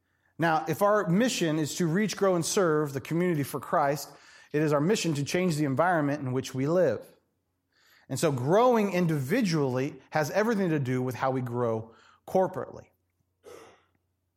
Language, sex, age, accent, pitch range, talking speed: English, male, 30-49, American, 125-180 Hz, 165 wpm